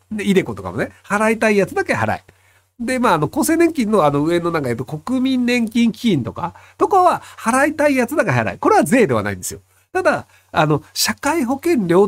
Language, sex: Japanese, male